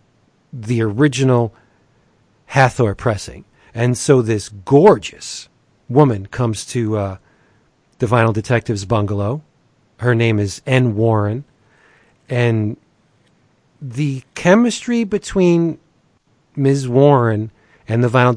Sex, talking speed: male, 100 wpm